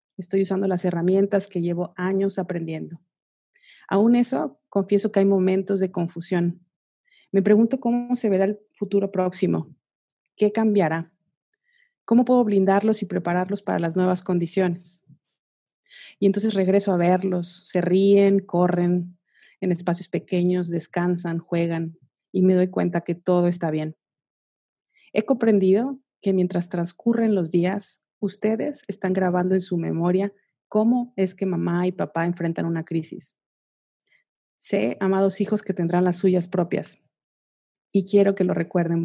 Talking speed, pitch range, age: 140 wpm, 175-200 Hz, 30-49